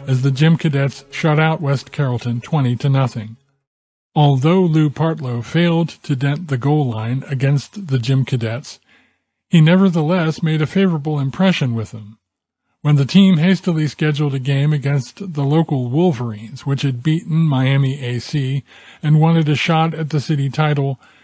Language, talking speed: English, 160 wpm